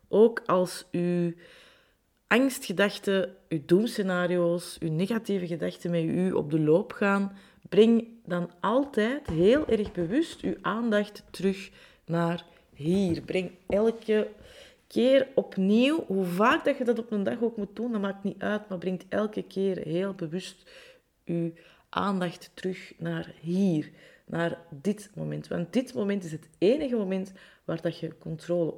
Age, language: 30-49, Dutch